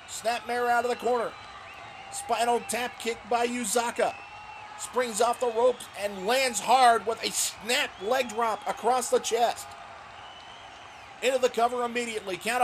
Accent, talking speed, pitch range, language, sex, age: American, 145 wpm, 185-250 Hz, English, male, 40-59